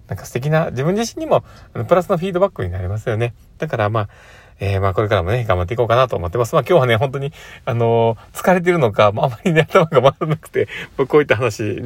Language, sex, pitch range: Japanese, male, 100-135 Hz